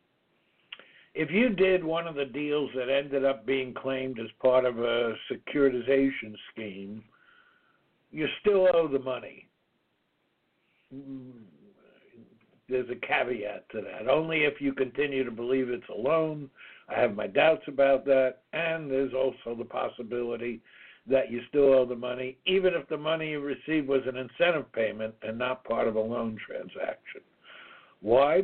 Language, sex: English, male